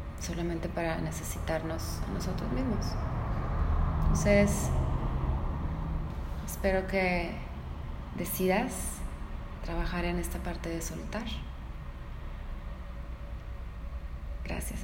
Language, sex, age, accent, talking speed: Spanish, female, 20-39, Mexican, 70 wpm